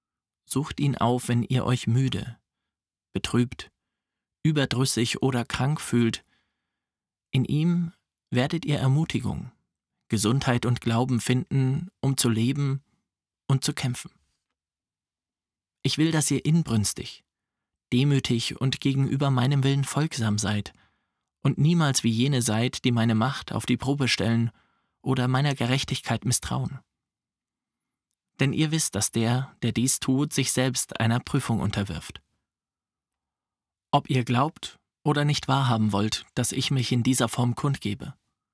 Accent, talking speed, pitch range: German, 130 wpm, 115-135 Hz